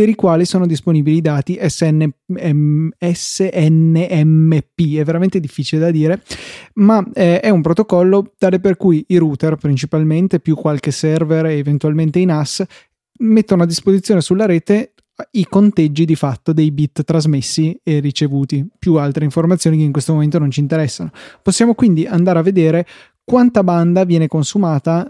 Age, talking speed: 20-39, 150 wpm